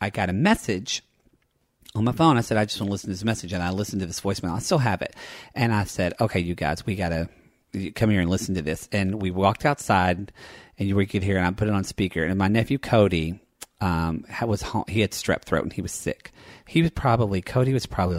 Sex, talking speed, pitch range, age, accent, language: male, 255 wpm, 85-105 Hz, 40-59, American, English